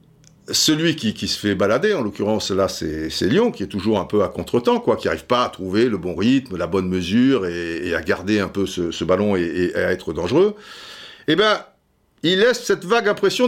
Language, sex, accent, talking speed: French, male, French, 225 wpm